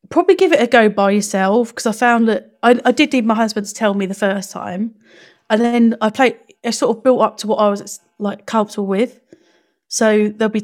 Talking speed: 235 wpm